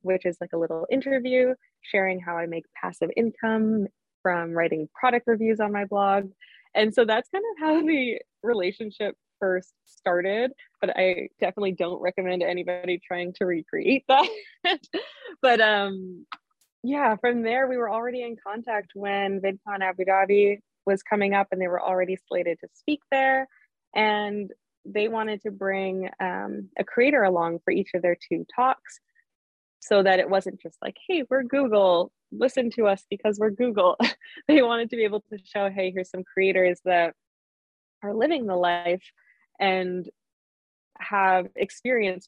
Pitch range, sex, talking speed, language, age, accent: 185-245 Hz, female, 160 wpm, English, 20-39, American